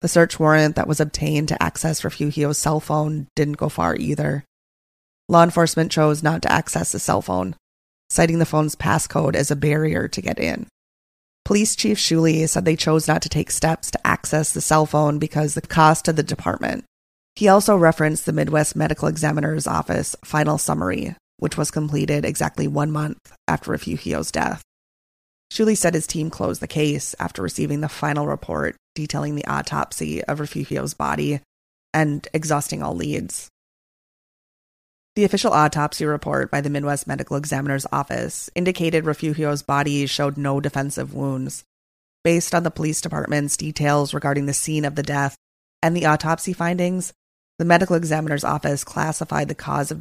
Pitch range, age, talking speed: 140-160 Hz, 20-39, 165 wpm